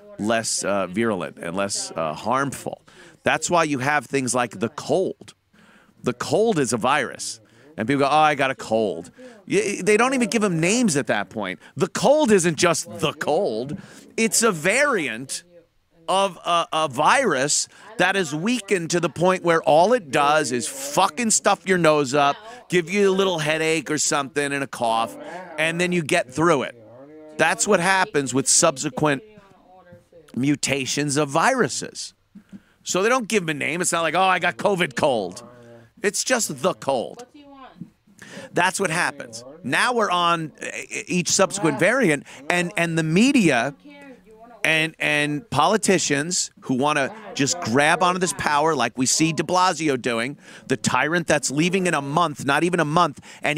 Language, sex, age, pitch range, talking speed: English, male, 40-59, 145-195 Hz, 170 wpm